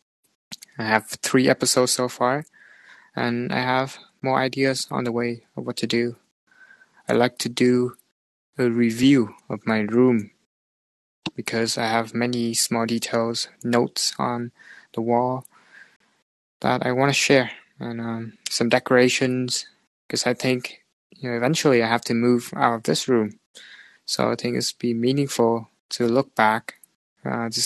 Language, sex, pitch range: English, male, 115-130 Hz